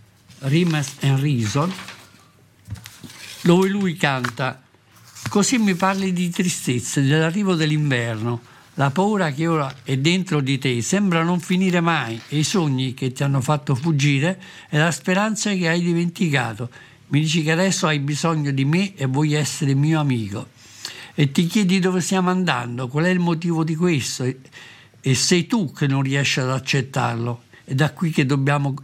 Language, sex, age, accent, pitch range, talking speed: Italian, male, 50-69, native, 130-165 Hz, 160 wpm